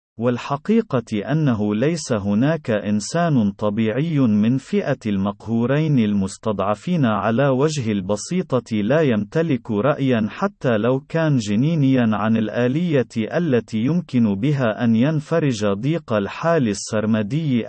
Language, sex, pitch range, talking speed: Arabic, male, 110-150 Hz, 100 wpm